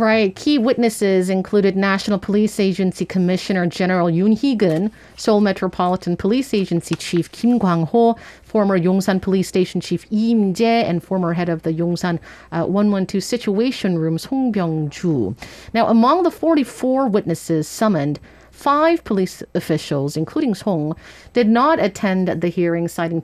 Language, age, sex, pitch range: English, 40-59, female, 165-210 Hz